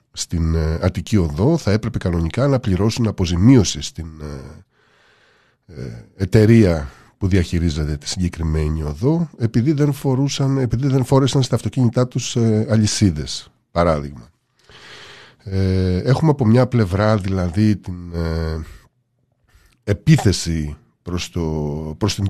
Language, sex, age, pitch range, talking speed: Greek, male, 50-69, 85-125 Hz, 100 wpm